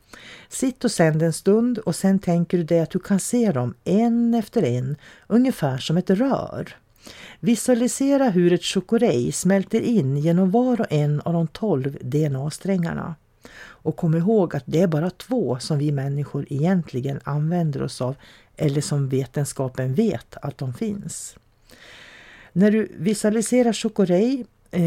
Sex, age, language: female, 40-59, English